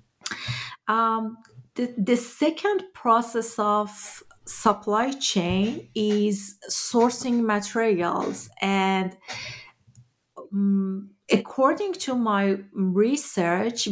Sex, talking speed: female, 75 wpm